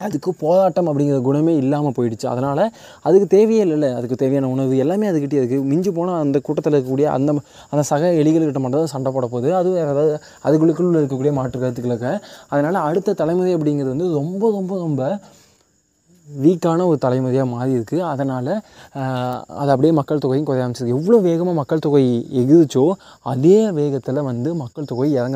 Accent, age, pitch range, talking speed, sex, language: native, 20-39, 135-175 Hz, 155 wpm, male, Tamil